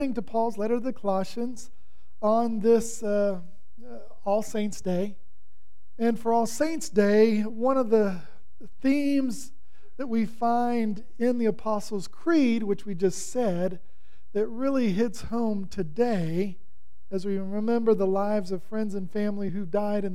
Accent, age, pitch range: American, 40-59, 190-235 Hz